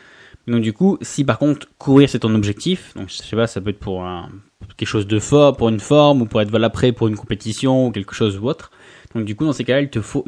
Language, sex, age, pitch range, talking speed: French, male, 20-39, 110-135 Hz, 280 wpm